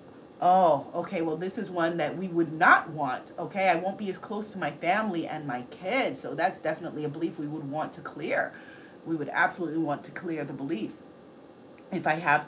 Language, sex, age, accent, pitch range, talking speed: English, female, 30-49, American, 165-215 Hz, 210 wpm